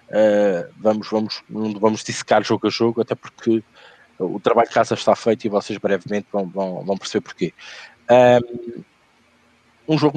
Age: 20-39